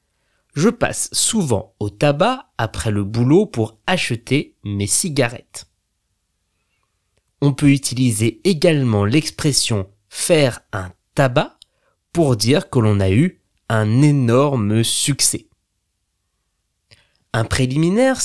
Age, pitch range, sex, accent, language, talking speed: 20-39, 105-160 Hz, male, French, French, 100 wpm